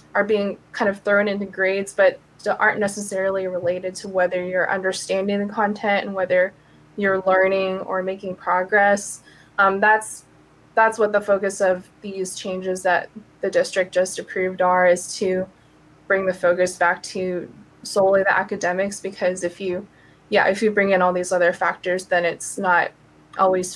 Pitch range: 185-200 Hz